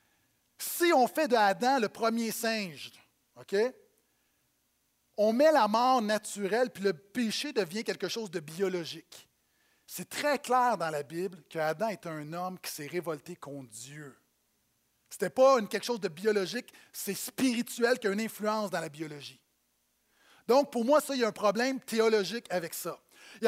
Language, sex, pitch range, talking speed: French, male, 200-260 Hz, 175 wpm